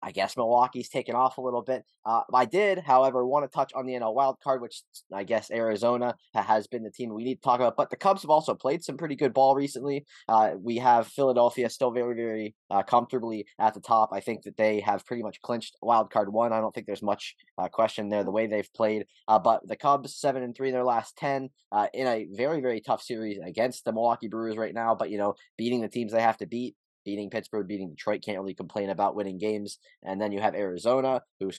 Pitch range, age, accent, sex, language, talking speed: 105-125 Hz, 20-39, American, male, English, 240 wpm